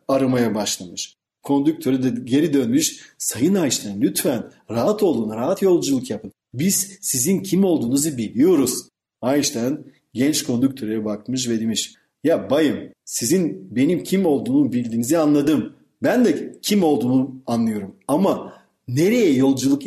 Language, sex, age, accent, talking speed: Turkish, male, 40-59, native, 125 wpm